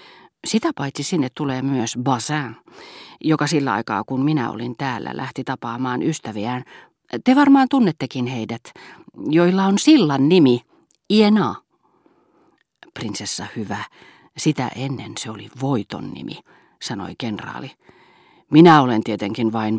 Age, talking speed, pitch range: 40-59, 120 wpm, 120-160 Hz